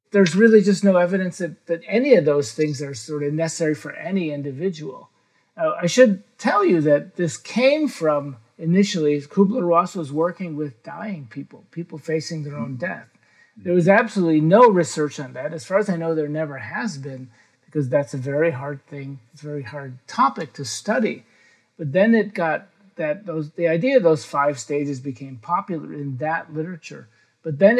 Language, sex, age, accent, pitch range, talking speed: English, male, 50-69, American, 145-175 Hz, 190 wpm